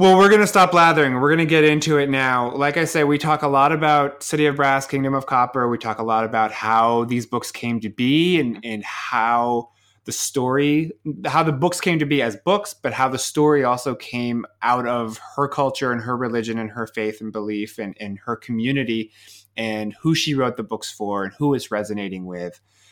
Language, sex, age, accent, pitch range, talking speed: English, male, 20-39, American, 110-145 Hz, 225 wpm